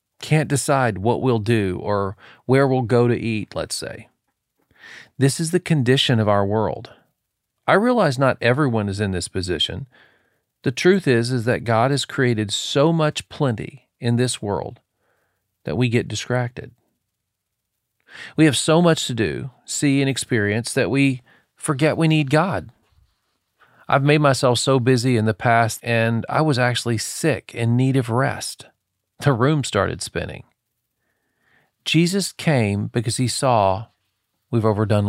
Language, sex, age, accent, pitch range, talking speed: English, male, 40-59, American, 110-140 Hz, 155 wpm